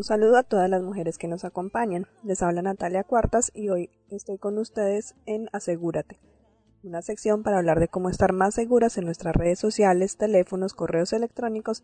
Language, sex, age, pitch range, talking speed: Spanish, female, 20-39, 185-220 Hz, 180 wpm